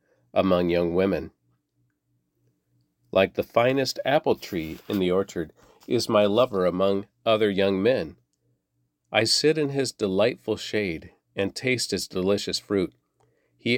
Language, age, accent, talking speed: English, 50-69, American, 130 wpm